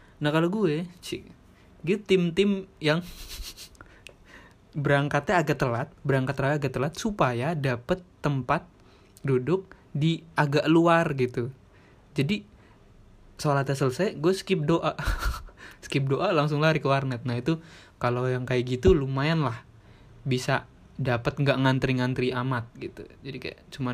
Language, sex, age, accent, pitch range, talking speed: Indonesian, male, 20-39, native, 120-150 Hz, 130 wpm